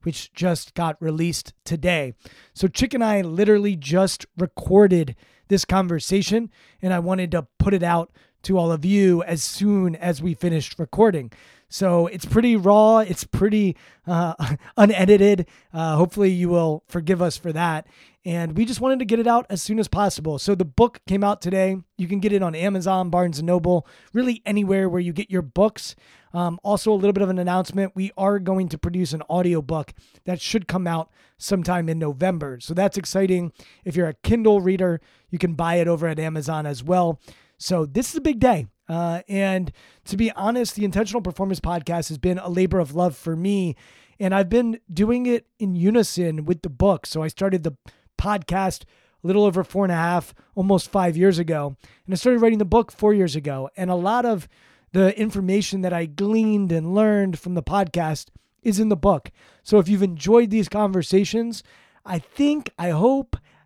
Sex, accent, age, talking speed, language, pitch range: male, American, 20-39, 195 wpm, English, 170-205 Hz